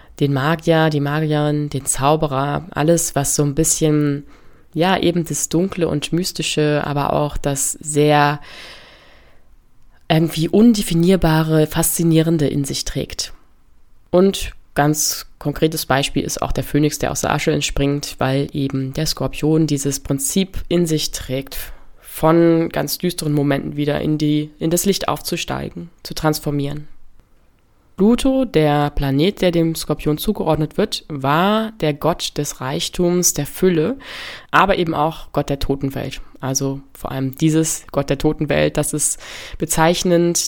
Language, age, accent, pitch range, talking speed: German, 20-39, German, 140-170 Hz, 135 wpm